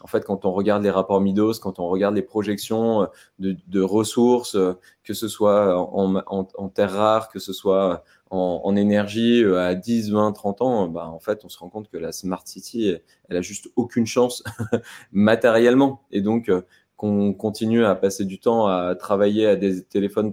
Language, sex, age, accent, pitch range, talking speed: French, male, 20-39, French, 95-115 Hz, 190 wpm